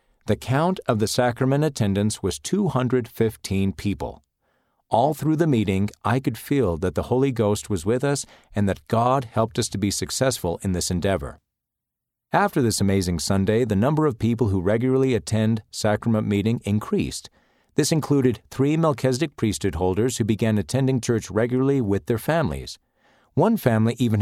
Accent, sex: American, male